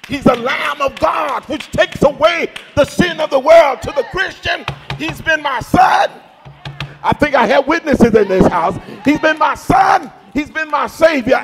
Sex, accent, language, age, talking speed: male, American, English, 50-69, 190 wpm